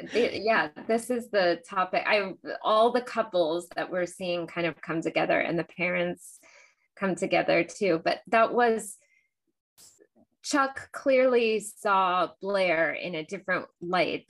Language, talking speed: English, 140 wpm